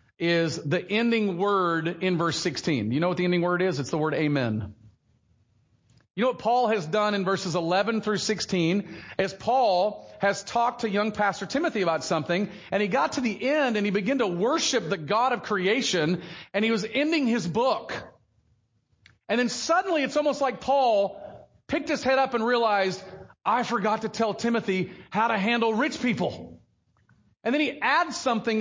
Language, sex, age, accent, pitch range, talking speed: English, male, 40-59, American, 170-235 Hz, 185 wpm